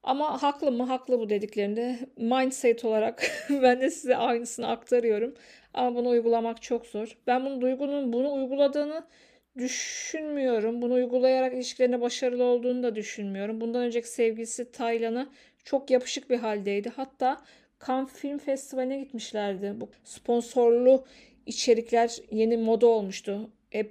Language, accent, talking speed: Turkish, native, 130 wpm